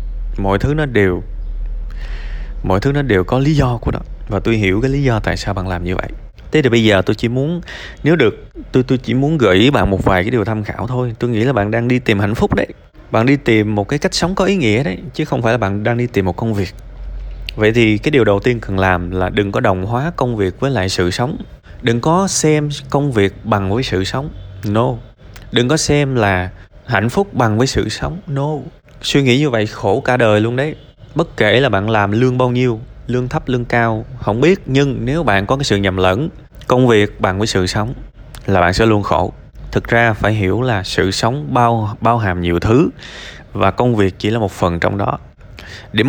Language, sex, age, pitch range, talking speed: Vietnamese, male, 20-39, 100-130 Hz, 240 wpm